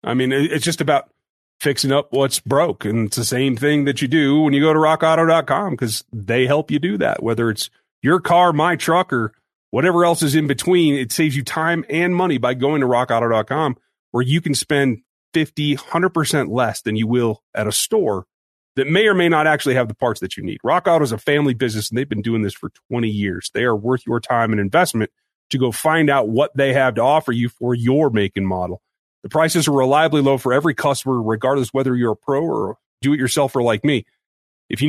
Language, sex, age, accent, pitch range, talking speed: English, male, 30-49, American, 125-160 Hz, 225 wpm